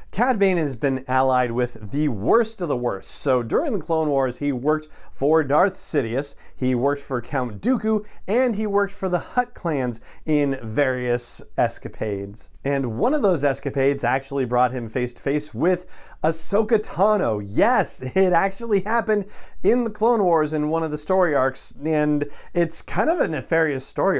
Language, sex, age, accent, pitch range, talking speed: English, male, 40-59, American, 130-175 Hz, 170 wpm